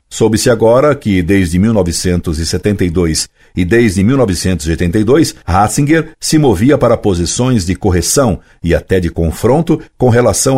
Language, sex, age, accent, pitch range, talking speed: Portuguese, male, 60-79, Brazilian, 85-115 Hz, 120 wpm